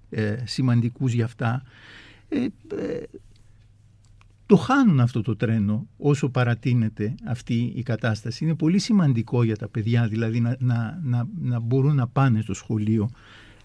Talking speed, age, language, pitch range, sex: 125 wpm, 60-79, Greek, 115-165 Hz, male